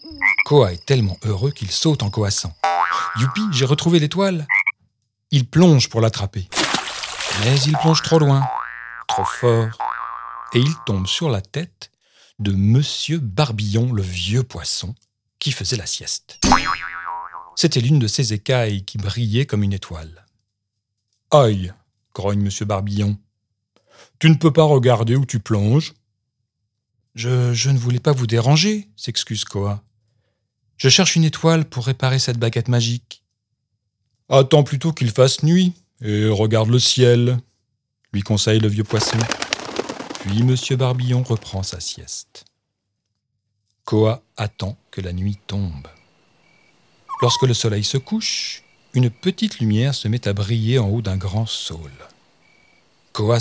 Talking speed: 145 wpm